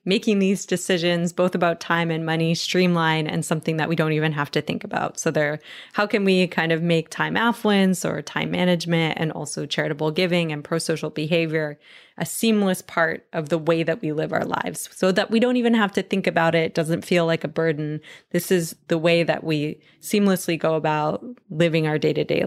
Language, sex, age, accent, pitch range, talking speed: English, female, 20-39, American, 160-190 Hz, 205 wpm